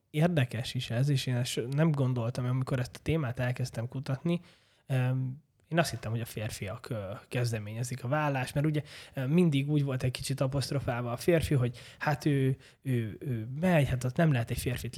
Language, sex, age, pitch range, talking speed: Hungarian, male, 20-39, 120-145 Hz, 180 wpm